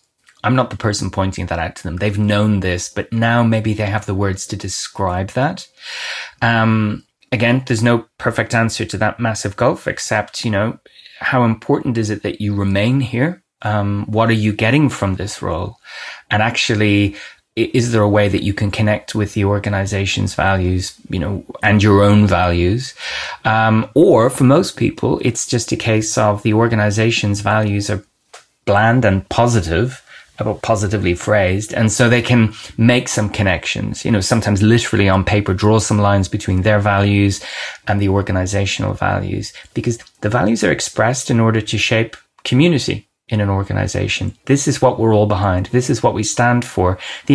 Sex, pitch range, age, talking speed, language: male, 100-120 Hz, 20-39, 175 wpm, English